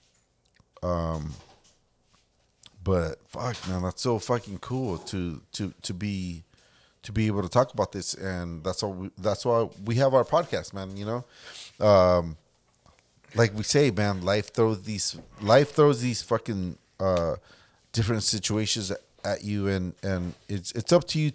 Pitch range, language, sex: 95-120 Hz, English, male